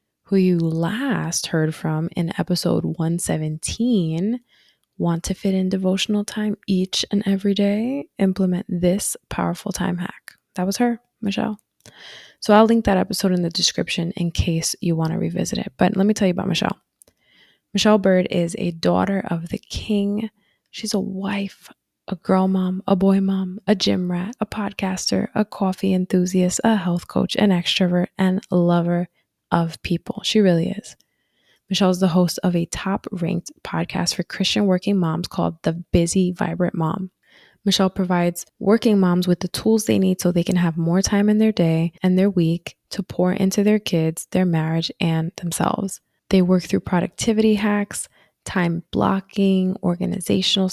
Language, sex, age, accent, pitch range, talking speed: English, female, 20-39, American, 175-200 Hz, 165 wpm